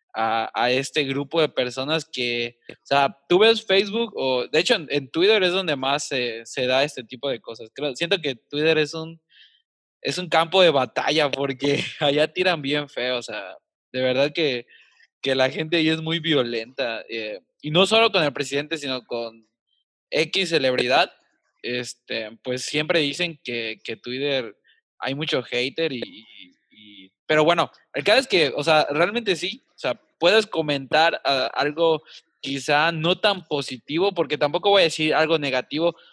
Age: 20-39